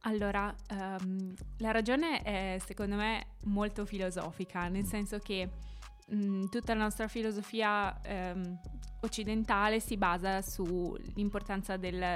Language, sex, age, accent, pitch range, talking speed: Italian, female, 20-39, native, 185-215 Hz, 100 wpm